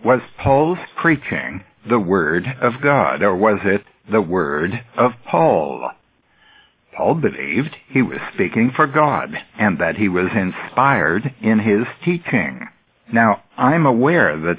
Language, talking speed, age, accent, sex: English, 135 wpm, 60-79, American, male